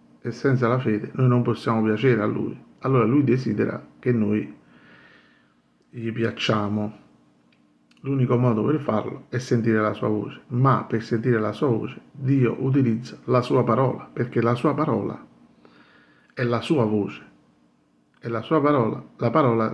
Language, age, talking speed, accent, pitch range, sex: Italian, 50-69, 155 wpm, native, 105-125 Hz, male